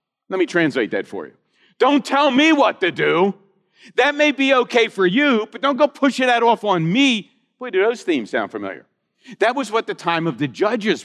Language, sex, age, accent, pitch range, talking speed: English, male, 50-69, American, 175-235 Hz, 215 wpm